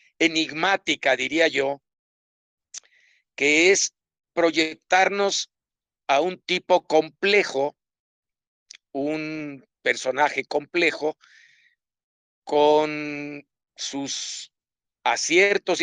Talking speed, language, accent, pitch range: 60 wpm, Spanish, Mexican, 150-190 Hz